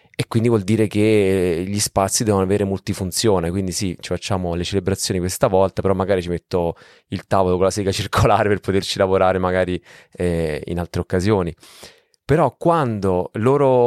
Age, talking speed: 30-49, 170 wpm